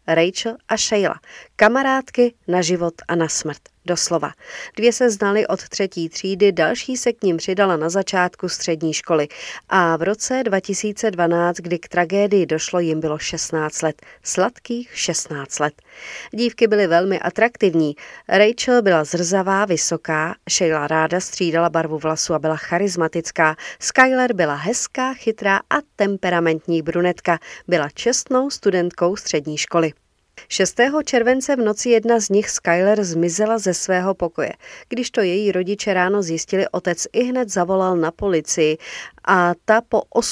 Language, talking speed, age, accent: Czech, 140 wpm, 40-59, native